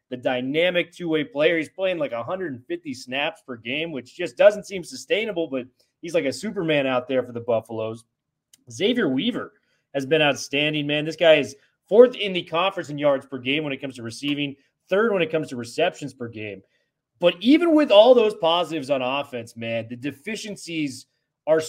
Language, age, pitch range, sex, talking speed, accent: English, 30-49, 135-175 Hz, male, 190 wpm, American